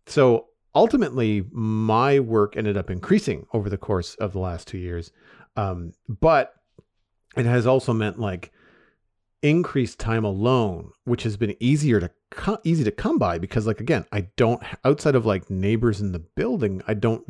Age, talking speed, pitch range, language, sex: 40-59, 170 wpm, 100-120 Hz, English, male